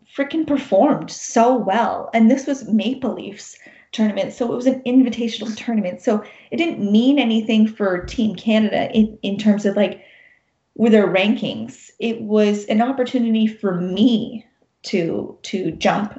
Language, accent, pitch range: English, American, 195-235 Hz